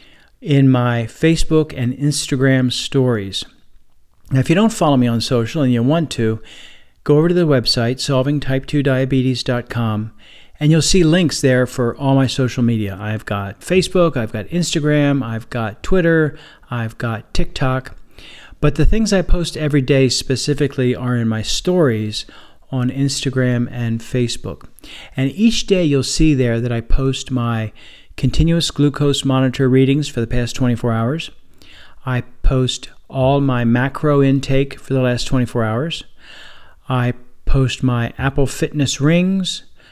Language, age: English, 40-59